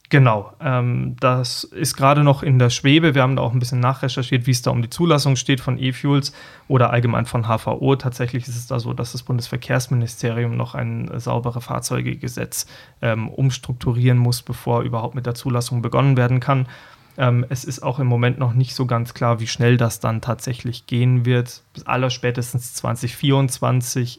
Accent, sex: German, male